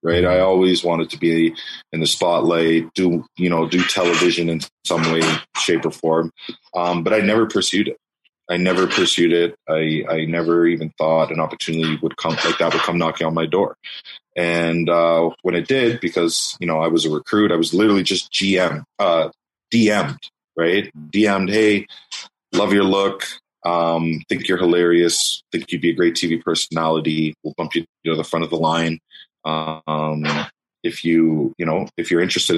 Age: 30-49